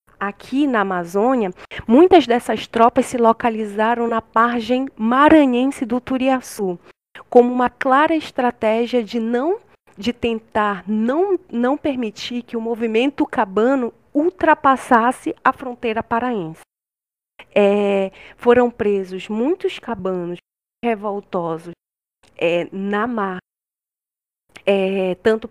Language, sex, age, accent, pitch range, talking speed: Portuguese, female, 20-39, Brazilian, 200-255 Hz, 90 wpm